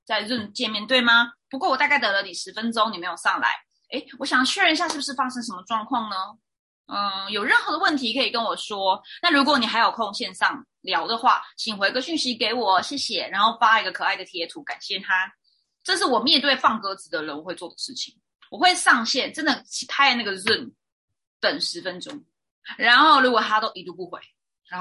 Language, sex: Chinese, female